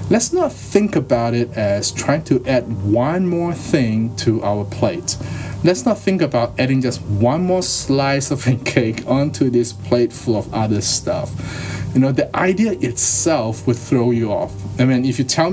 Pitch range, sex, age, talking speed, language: 110-140 Hz, male, 20-39, 185 wpm, English